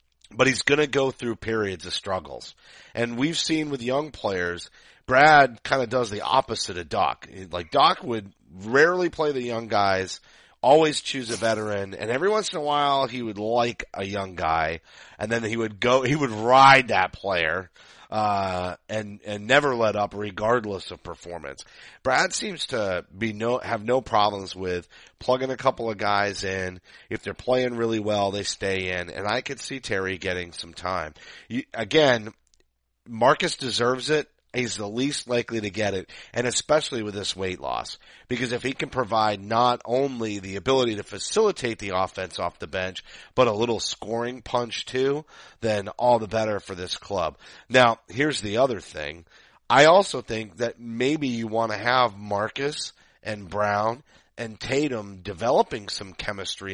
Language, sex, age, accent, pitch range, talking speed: English, male, 30-49, American, 100-125 Hz, 175 wpm